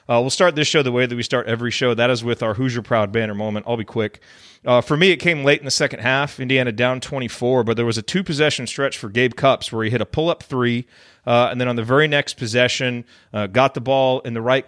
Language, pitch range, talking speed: English, 115-140 Hz, 270 wpm